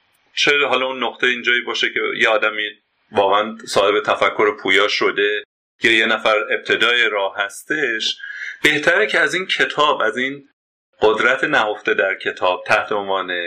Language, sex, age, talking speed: Persian, male, 30-49, 150 wpm